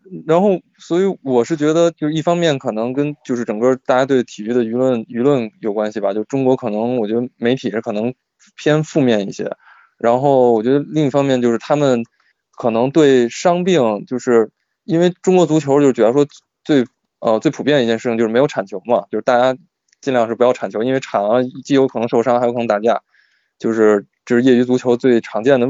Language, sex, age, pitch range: Chinese, male, 20-39, 115-140 Hz